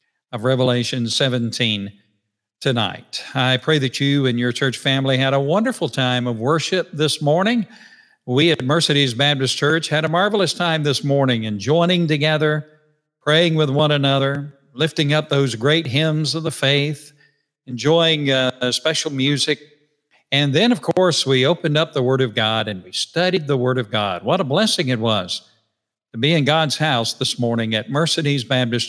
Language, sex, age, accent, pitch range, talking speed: English, male, 50-69, American, 125-155 Hz, 170 wpm